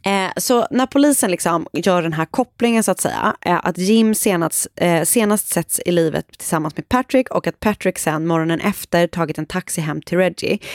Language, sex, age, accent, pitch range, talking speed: Swedish, female, 30-49, native, 165-220 Hz, 185 wpm